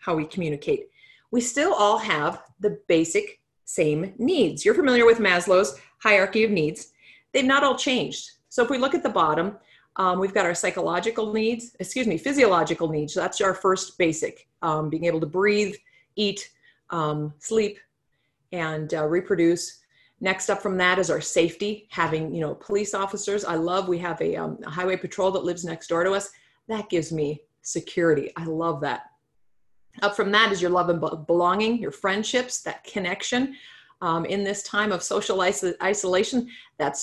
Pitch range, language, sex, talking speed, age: 165-210 Hz, English, female, 175 wpm, 40-59